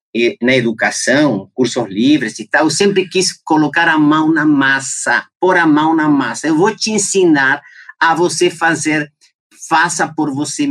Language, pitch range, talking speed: Portuguese, 120-170 Hz, 165 wpm